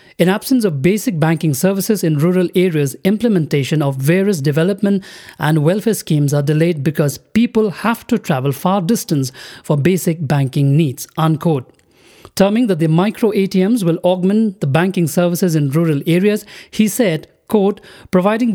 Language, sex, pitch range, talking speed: English, male, 160-200 Hz, 140 wpm